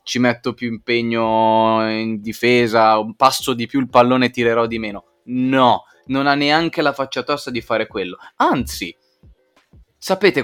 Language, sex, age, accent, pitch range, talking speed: Italian, male, 20-39, native, 110-145 Hz, 160 wpm